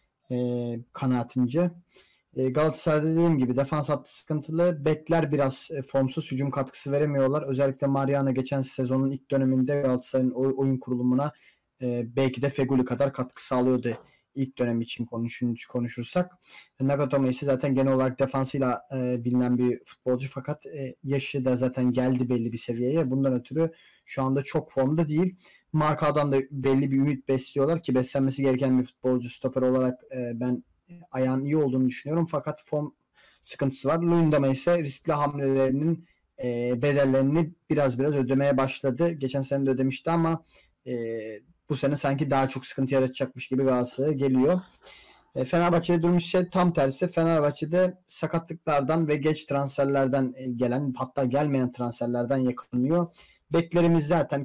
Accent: native